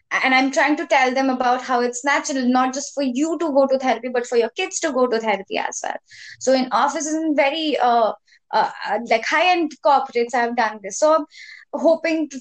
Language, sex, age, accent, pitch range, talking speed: English, female, 20-39, Indian, 250-300 Hz, 215 wpm